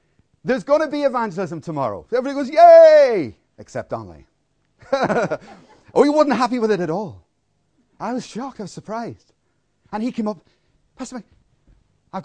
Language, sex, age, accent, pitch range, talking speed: English, male, 30-49, British, 185-260 Hz, 155 wpm